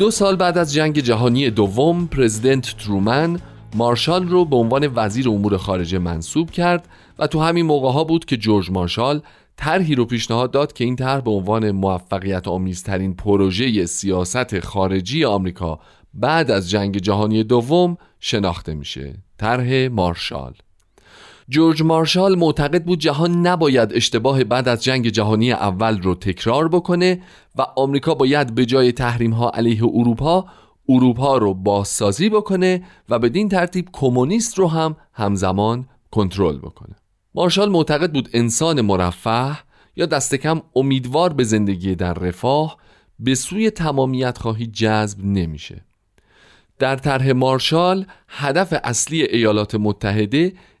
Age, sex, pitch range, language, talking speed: 40-59, male, 105-155 Hz, Persian, 135 wpm